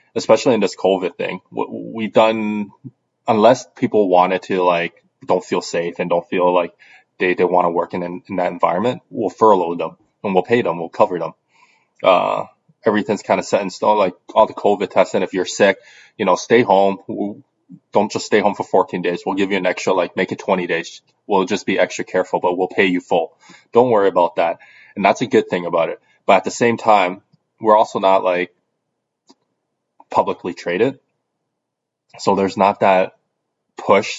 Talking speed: 195 wpm